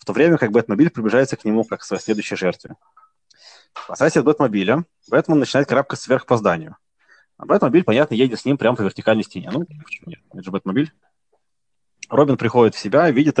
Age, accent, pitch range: 20-39, native, 110-155 Hz